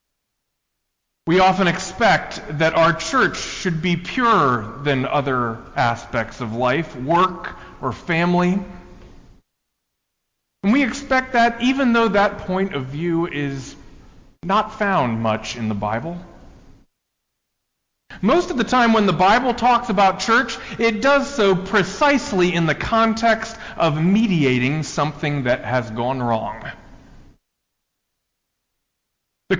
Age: 40-59